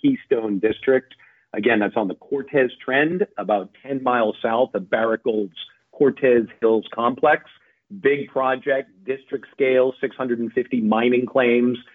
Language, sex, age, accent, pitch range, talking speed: English, male, 50-69, American, 110-130 Hz, 140 wpm